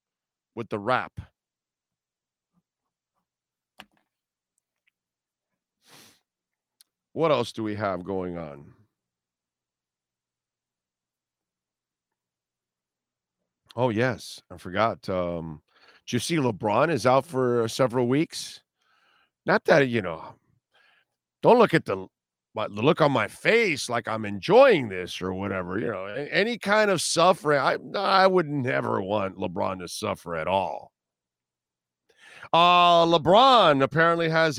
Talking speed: 110 wpm